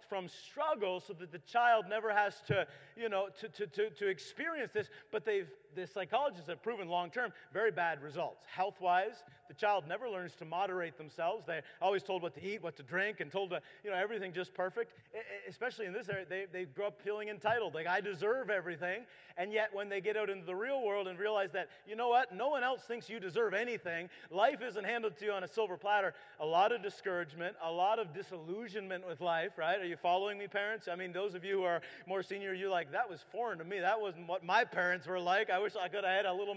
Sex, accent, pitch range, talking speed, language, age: male, American, 180-220 Hz, 240 wpm, English, 40-59